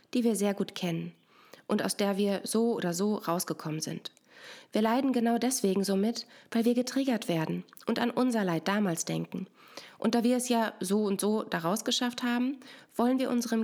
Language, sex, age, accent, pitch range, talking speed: German, female, 20-39, German, 185-235 Hz, 190 wpm